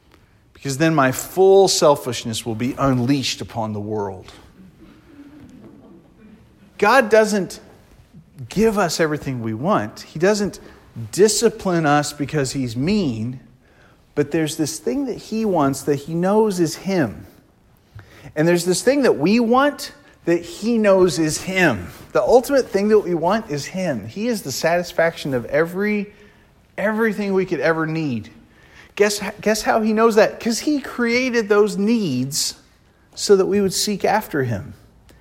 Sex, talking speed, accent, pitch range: male, 145 wpm, American, 125-200 Hz